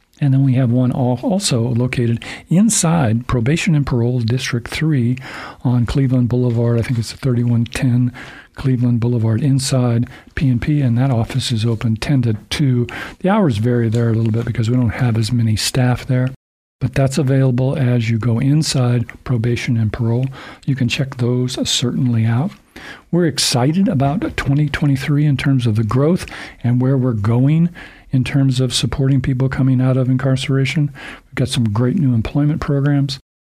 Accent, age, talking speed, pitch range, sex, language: American, 50-69, 165 wpm, 120-140 Hz, male, English